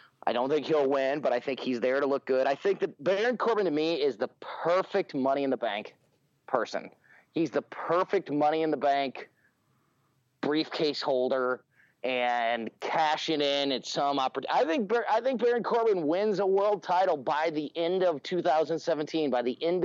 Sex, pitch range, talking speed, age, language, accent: male, 130-160 Hz, 165 wpm, 30-49, English, American